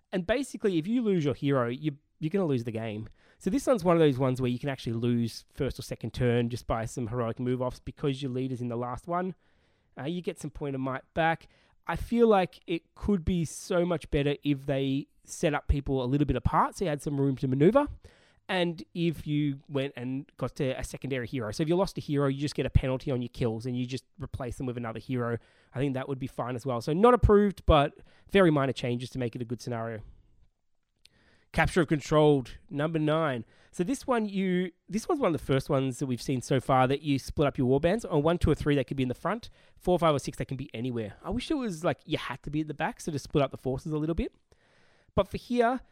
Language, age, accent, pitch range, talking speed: English, 20-39, Australian, 130-170 Hz, 255 wpm